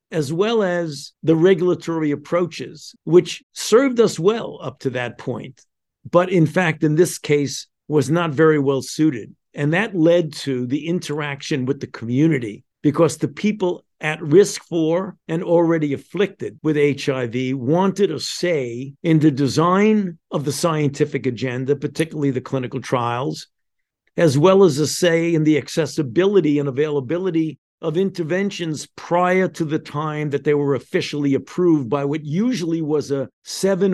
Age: 50-69